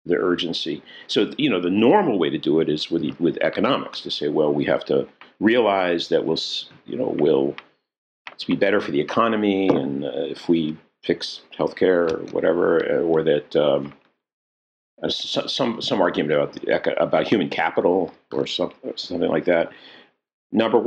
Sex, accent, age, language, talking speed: male, American, 50-69, English, 165 wpm